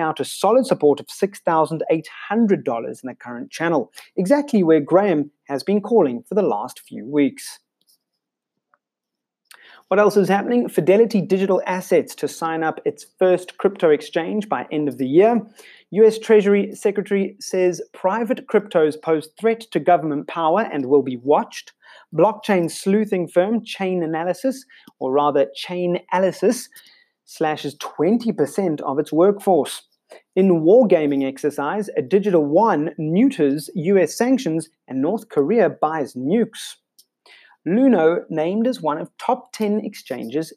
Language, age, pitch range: English, 30-49, 155-215 Hz